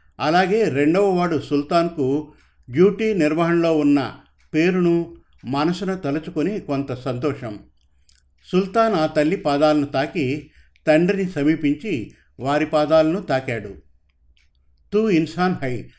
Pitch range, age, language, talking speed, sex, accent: 125-170 Hz, 50-69, Telugu, 95 wpm, male, native